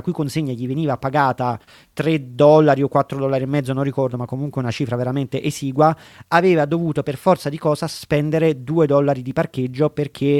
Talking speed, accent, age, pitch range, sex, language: 185 wpm, native, 30-49, 135-165 Hz, male, Italian